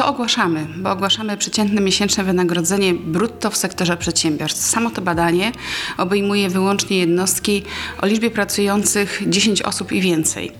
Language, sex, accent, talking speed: Polish, female, native, 135 wpm